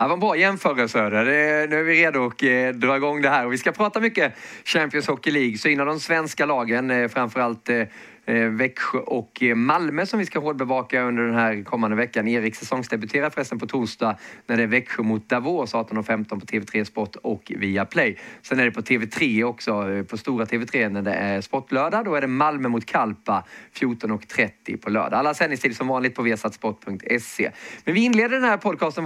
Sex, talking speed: male, 195 wpm